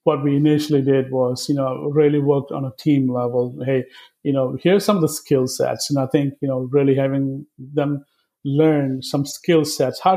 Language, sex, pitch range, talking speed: English, male, 135-155 Hz, 205 wpm